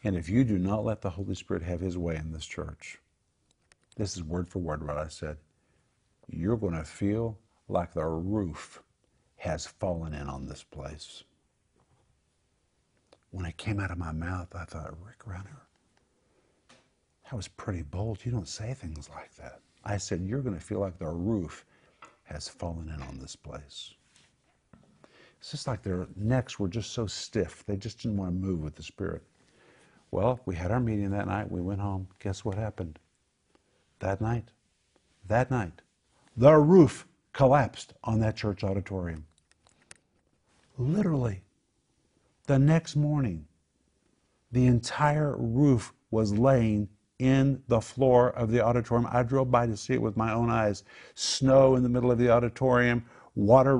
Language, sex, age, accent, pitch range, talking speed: English, male, 50-69, American, 90-120 Hz, 165 wpm